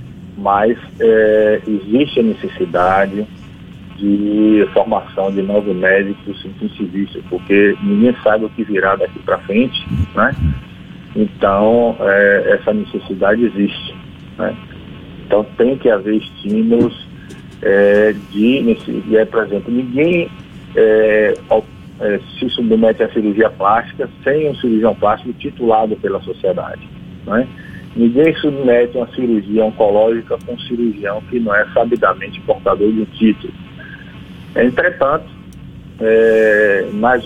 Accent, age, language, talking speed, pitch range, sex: Brazilian, 50-69, Portuguese, 110 wpm, 100-120 Hz, male